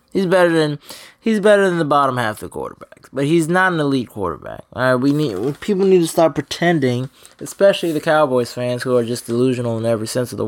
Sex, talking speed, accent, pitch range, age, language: male, 230 wpm, American, 120-180 Hz, 20-39, English